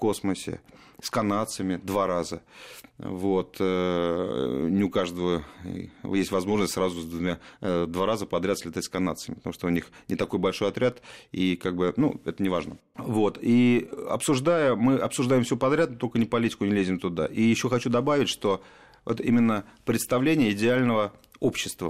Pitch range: 95-115 Hz